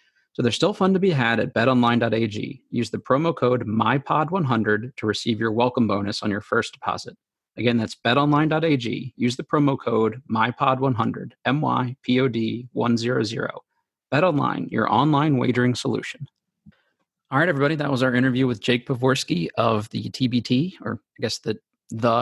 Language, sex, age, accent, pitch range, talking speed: English, male, 30-49, American, 115-130 Hz, 155 wpm